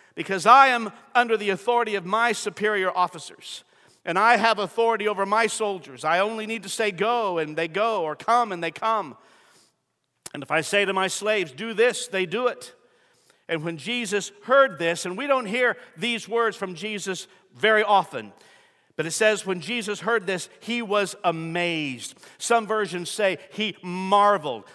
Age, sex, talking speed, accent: 50-69, male, 175 wpm, American